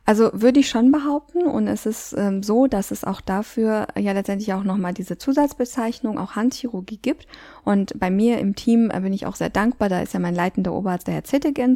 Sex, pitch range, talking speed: female, 190-235 Hz, 215 wpm